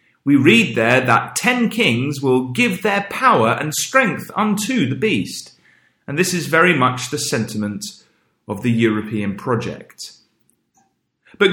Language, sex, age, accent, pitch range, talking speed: English, male, 40-59, British, 115-190 Hz, 140 wpm